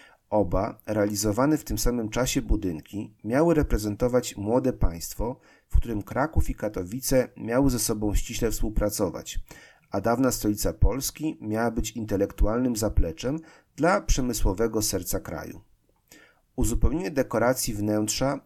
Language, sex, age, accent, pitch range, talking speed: Polish, male, 40-59, native, 100-125 Hz, 115 wpm